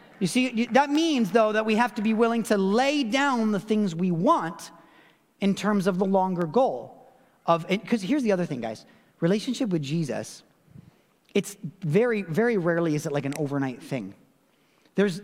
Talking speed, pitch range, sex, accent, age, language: 175 wpm, 165-220 Hz, male, American, 30-49, English